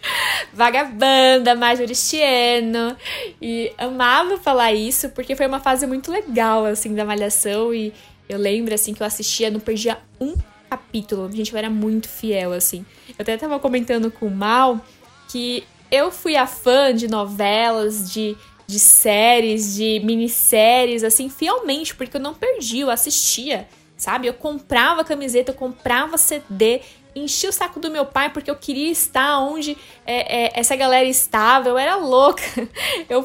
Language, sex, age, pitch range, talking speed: Portuguese, female, 10-29, 220-280 Hz, 155 wpm